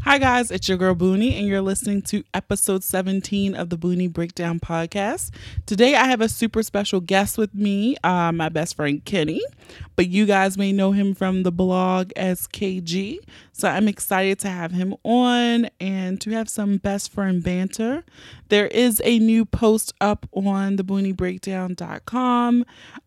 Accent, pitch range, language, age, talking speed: American, 180-215 Hz, English, 20-39, 165 wpm